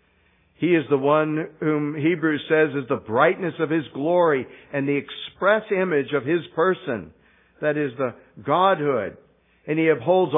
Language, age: English, 60-79